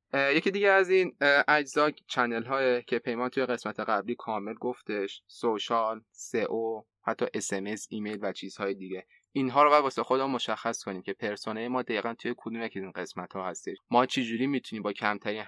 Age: 20-39